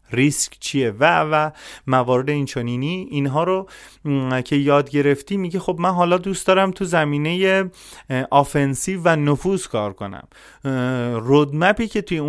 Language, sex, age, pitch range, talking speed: Persian, male, 30-49, 130-160 Hz, 145 wpm